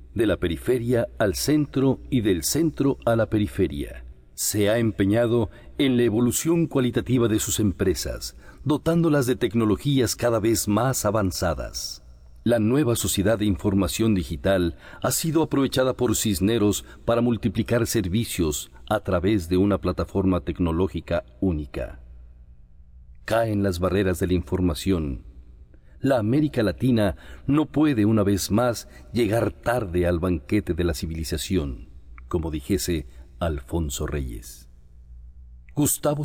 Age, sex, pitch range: 50-69, male, 80-120 Hz